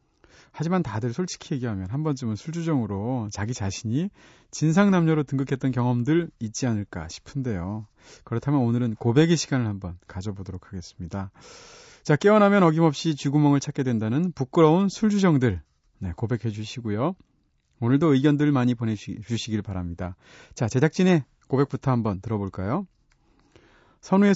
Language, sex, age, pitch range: Korean, male, 30-49, 110-160 Hz